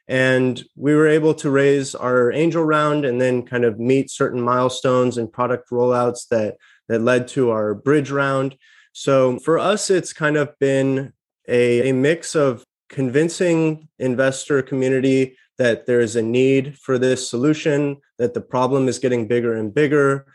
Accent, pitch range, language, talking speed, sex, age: American, 120-150 Hz, English, 165 wpm, male, 20-39